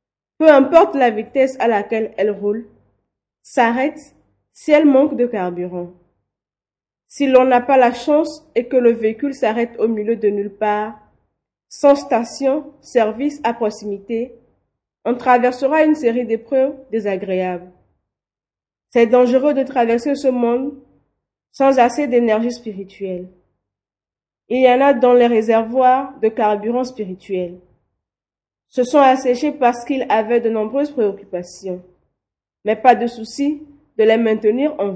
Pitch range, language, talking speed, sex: 215-270 Hz, French, 135 wpm, female